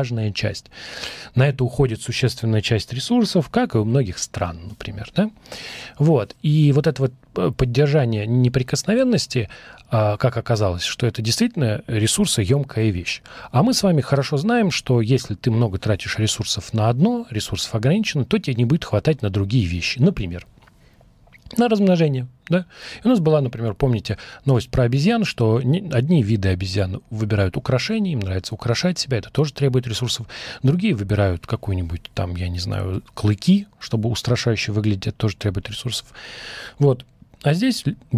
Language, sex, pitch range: Russian, male, 105-145 Hz